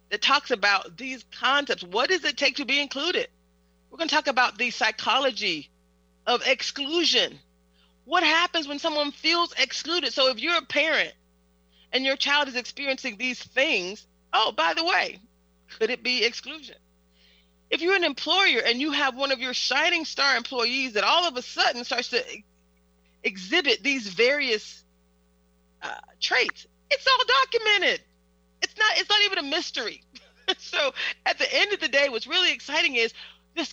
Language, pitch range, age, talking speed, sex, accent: English, 190-300 Hz, 40-59, 165 wpm, female, American